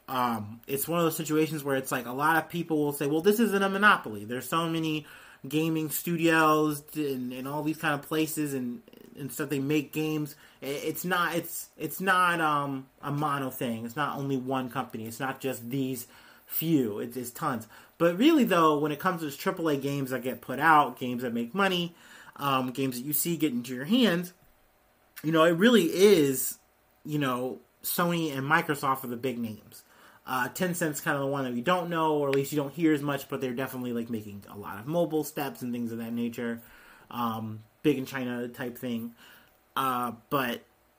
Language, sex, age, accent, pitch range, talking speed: English, male, 30-49, American, 125-160 Hz, 210 wpm